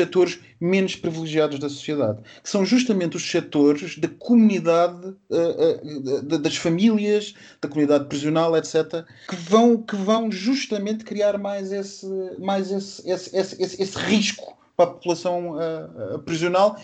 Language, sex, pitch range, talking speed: Portuguese, male, 135-185 Hz, 130 wpm